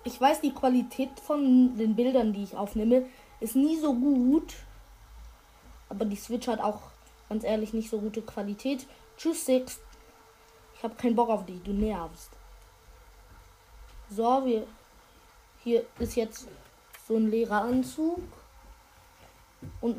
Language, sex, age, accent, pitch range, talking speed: German, female, 20-39, German, 205-260 Hz, 130 wpm